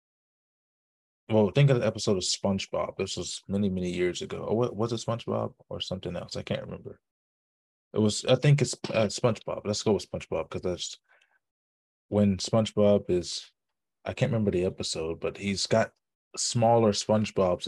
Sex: male